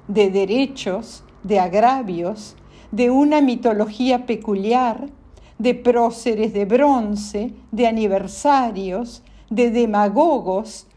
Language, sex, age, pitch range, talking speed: Spanish, female, 50-69, 205-270 Hz, 90 wpm